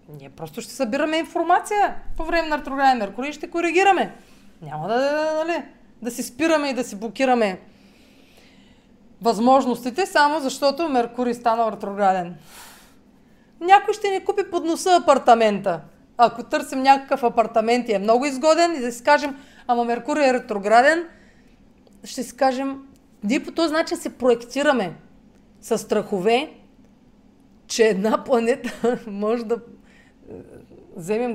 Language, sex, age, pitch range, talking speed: Bulgarian, female, 30-49, 215-290 Hz, 130 wpm